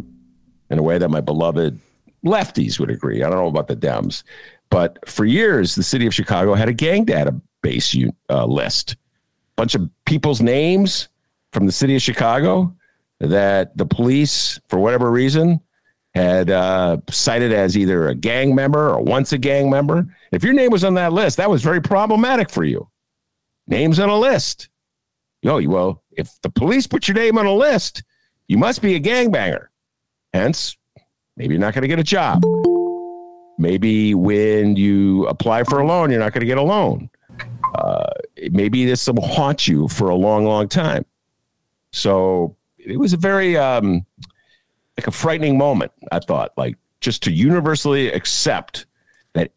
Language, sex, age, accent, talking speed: English, male, 50-69, American, 175 wpm